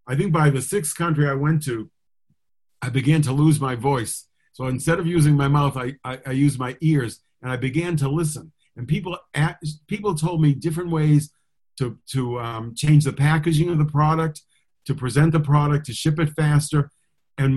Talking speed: 200 wpm